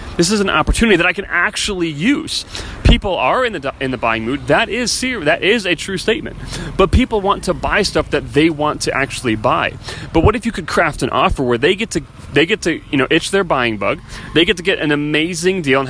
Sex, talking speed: male, 250 wpm